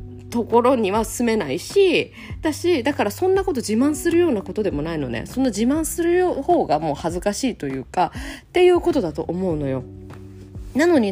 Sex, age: female, 20-39